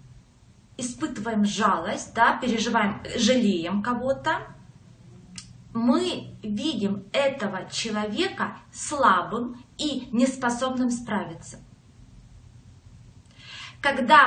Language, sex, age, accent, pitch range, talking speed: Russian, female, 20-39, native, 185-270 Hz, 60 wpm